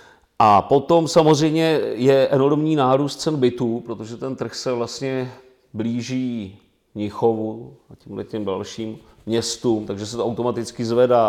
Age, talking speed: 40-59, 135 wpm